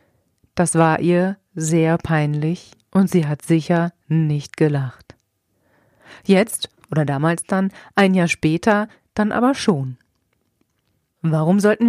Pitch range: 155-195 Hz